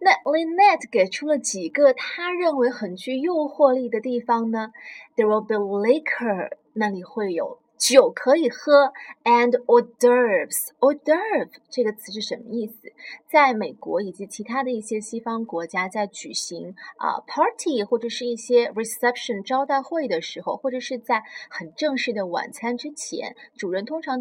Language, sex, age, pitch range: Chinese, female, 20-39, 215-280 Hz